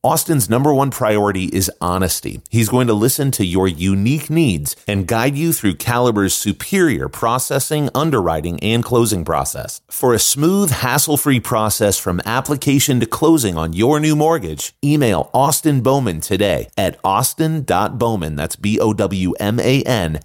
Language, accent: English, American